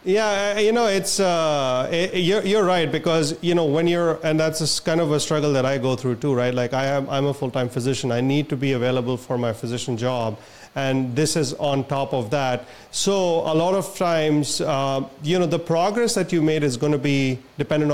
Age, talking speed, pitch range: 30-49, 225 wpm, 135-165 Hz